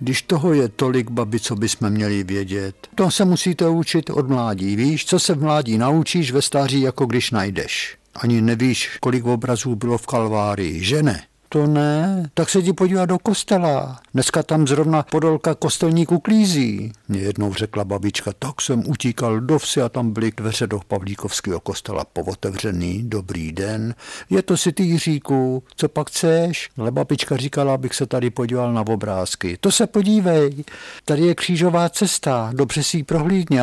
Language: Czech